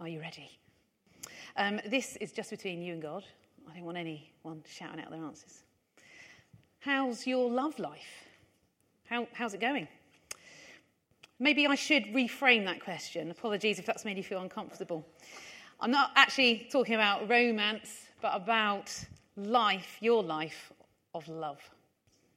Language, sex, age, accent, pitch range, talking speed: English, female, 40-59, British, 175-235 Hz, 140 wpm